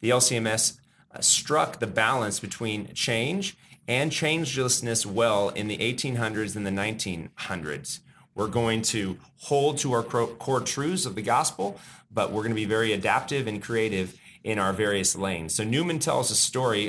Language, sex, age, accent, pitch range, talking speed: English, male, 30-49, American, 105-130 Hz, 160 wpm